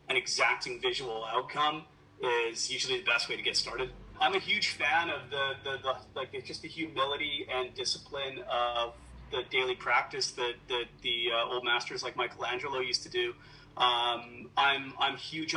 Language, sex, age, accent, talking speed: English, male, 30-49, American, 175 wpm